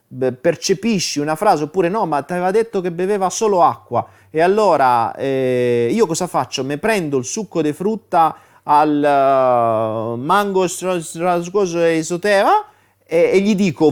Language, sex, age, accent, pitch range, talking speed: Italian, male, 30-49, native, 115-180 Hz, 145 wpm